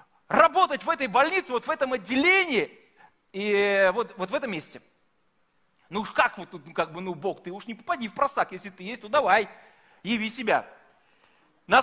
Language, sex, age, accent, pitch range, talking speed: Russian, male, 40-59, native, 250-345 Hz, 190 wpm